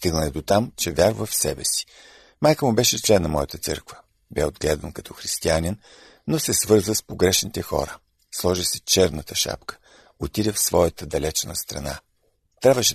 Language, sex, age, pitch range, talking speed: Bulgarian, male, 50-69, 85-115 Hz, 160 wpm